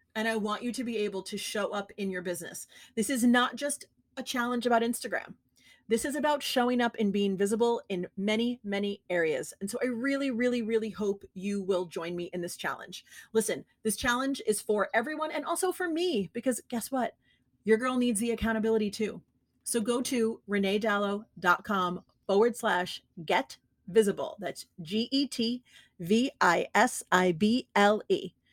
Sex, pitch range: female, 195-245 Hz